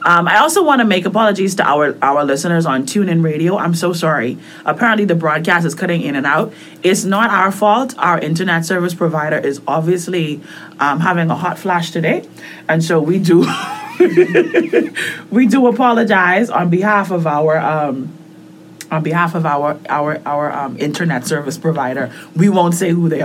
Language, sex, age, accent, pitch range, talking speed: English, female, 30-49, American, 160-205 Hz, 175 wpm